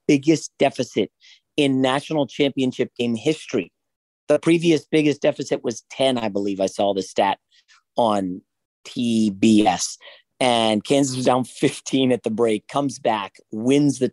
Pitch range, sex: 115-150 Hz, male